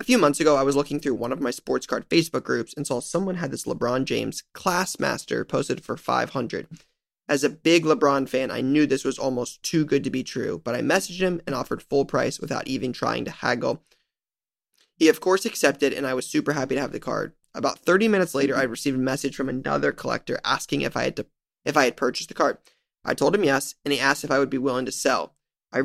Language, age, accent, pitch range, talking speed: English, 20-39, American, 130-160 Hz, 245 wpm